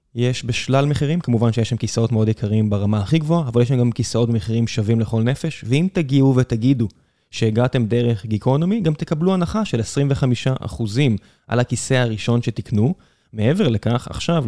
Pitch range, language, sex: 115-140 Hz, Hebrew, male